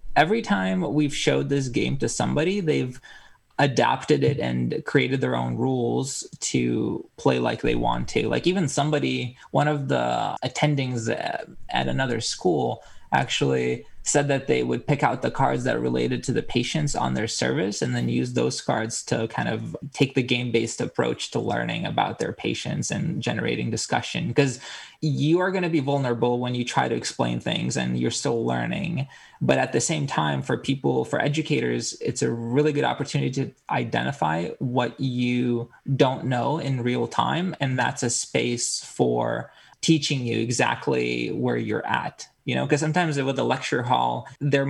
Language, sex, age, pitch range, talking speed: English, male, 20-39, 115-145 Hz, 175 wpm